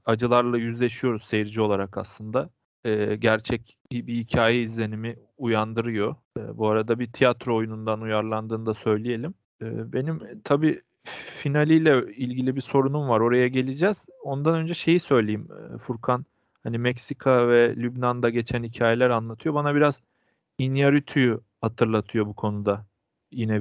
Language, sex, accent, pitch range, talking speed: Turkish, male, native, 110-135 Hz, 115 wpm